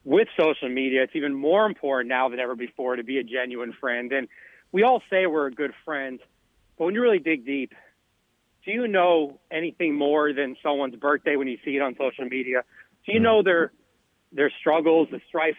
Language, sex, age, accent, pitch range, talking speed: English, male, 40-59, American, 140-185 Hz, 205 wpm